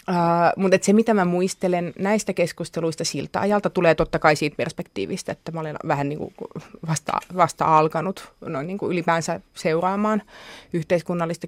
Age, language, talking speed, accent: 30-49, Finnish, 125 wpm, native